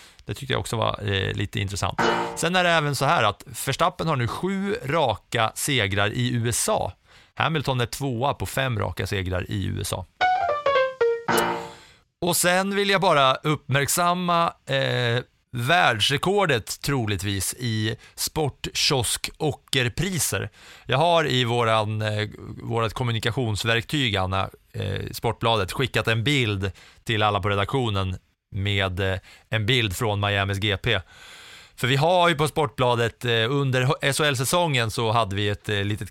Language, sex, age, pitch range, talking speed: English, male, 30-49, 100-135 Hz, 130 wpm